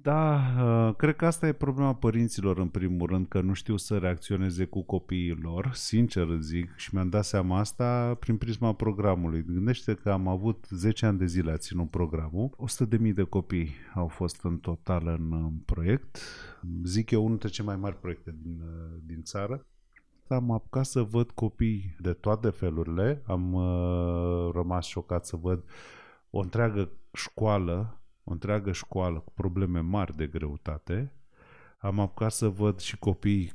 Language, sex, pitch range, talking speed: Romanian, male, 85-115 Hz, 160 wpm